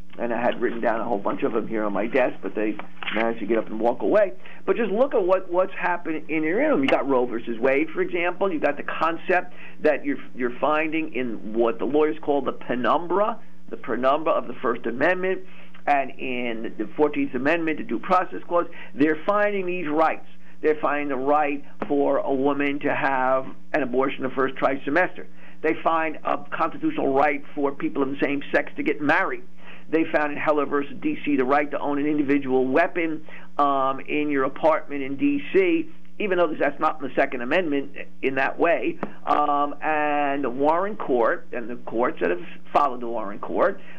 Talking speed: 200 wpm